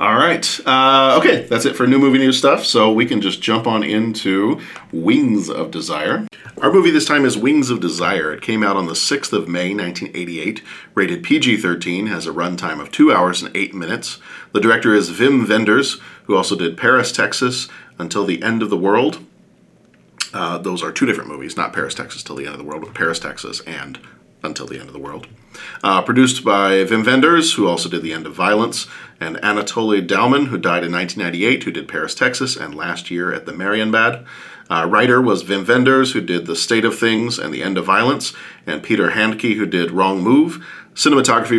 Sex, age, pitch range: male, 40-59, 90-130 Hz